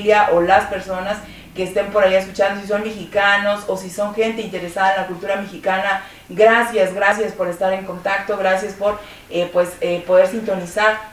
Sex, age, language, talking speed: female, 30-49, Spanish, 180 wpm